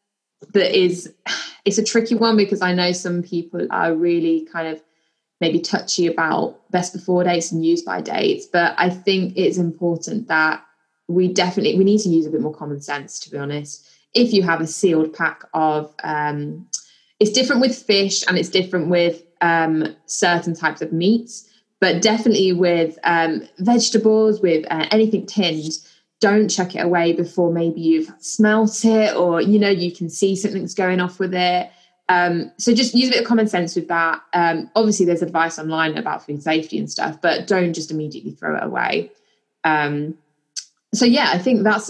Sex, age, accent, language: female, 20-39, British, English